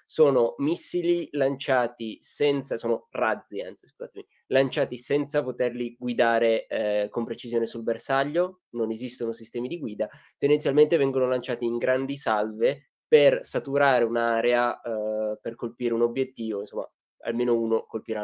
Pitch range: 115-130 Hz